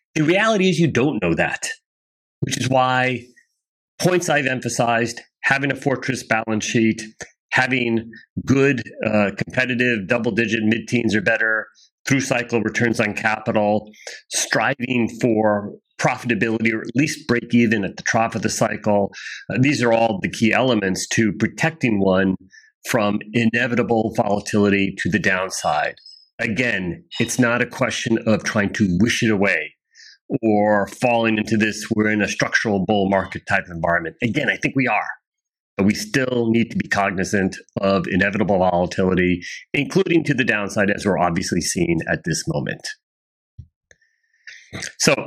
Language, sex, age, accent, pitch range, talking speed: English, male, 40-59, American, 105-130 Hz, 150 wpm